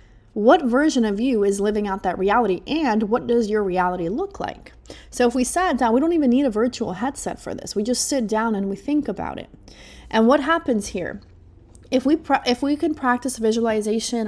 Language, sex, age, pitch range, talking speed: English, female, 20-39, 190-245 Hz, 210 wpm